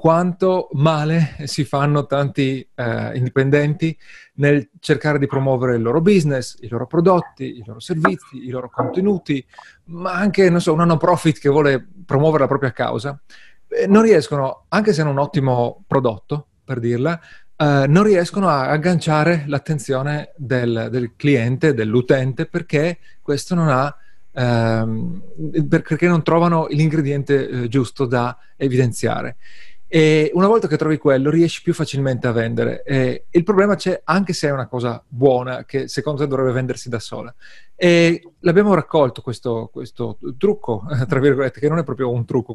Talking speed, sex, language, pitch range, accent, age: 155 wpm, male, Italian, 125-160 Hz, native, 30-49